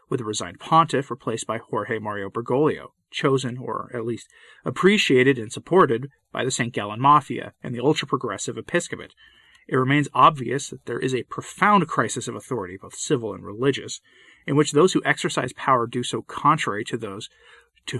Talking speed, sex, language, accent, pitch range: 175 wpm, male, English, American, 115-150 Hz